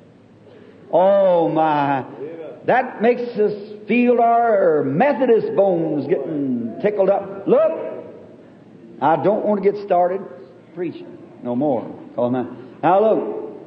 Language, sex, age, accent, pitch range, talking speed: English, male, 60-79, American, 205-265 Hz, 105 wpm